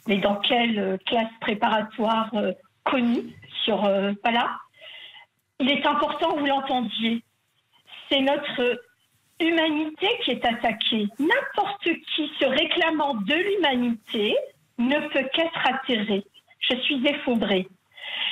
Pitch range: 230-305 Hz